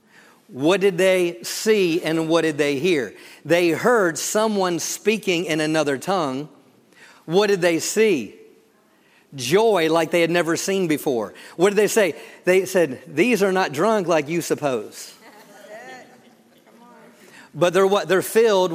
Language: English